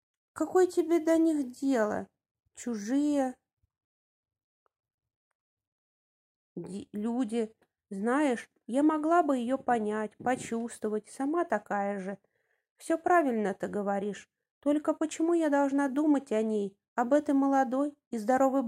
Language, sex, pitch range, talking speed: English, female, 215-280 Hz, 105 wpm